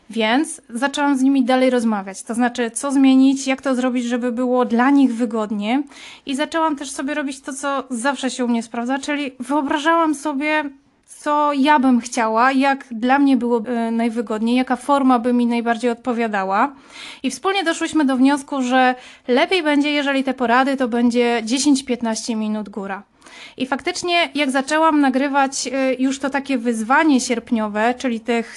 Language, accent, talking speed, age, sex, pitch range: Polish, native, 160 wpm, 20-39, female, 245-290 Hz